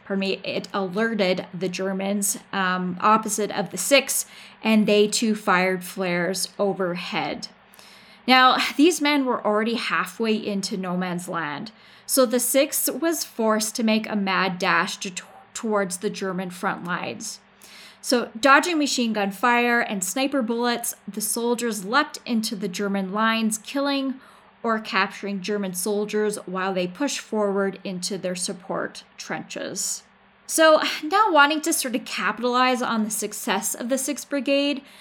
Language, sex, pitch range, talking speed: English, female, 195-240 Hz, 145 wpm